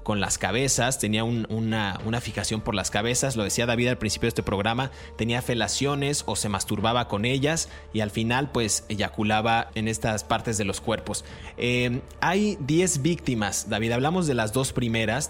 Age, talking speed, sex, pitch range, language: 30-49, 185 wpm, male, 110-145 Hz, Spanish